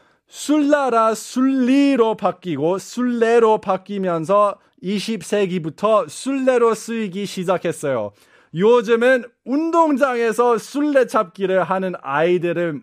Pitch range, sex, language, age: 165-235 Hz, male, Korean, 20-39